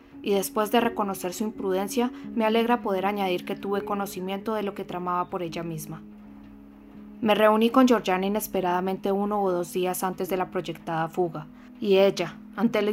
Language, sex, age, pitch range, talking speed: Spanish, female, 20-39, 180-205 Hz, 175 wpm